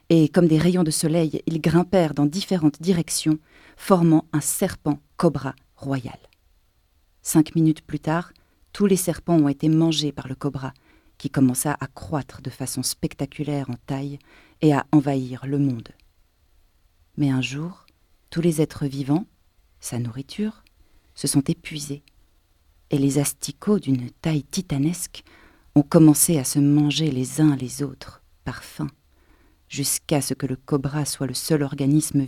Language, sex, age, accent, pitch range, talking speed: French, female, 40-59, French, 130-165 Hz, 150 wpm